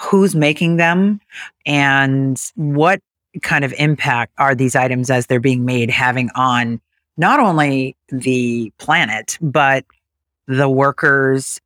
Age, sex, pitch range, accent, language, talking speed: 40-59, female, 125-145 Hz, American, English, 125 wpm